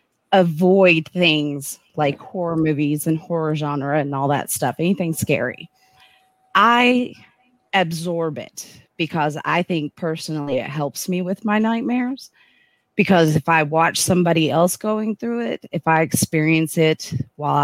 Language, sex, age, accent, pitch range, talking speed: English, female, 30-49, American, 150-195 Hz, 140 wpm